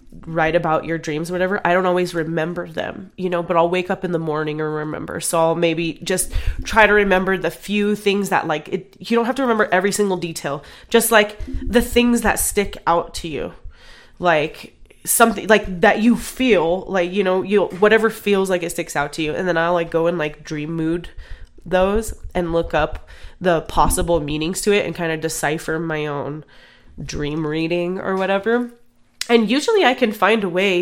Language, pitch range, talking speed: English, 160-195 Hz, 205 wpm